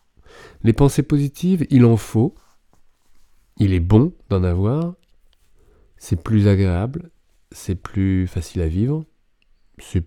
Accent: French